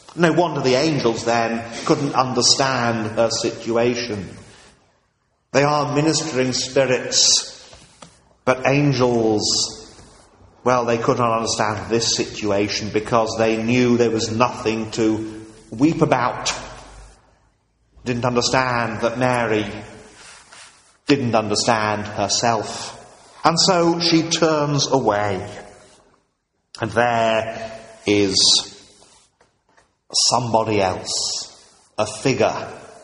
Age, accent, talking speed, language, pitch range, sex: 40-59, British, 90 wpm, English, 110-135 Hz, male